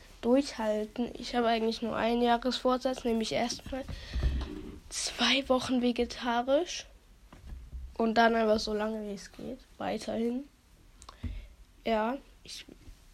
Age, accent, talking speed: 10-29, German, 105 wpm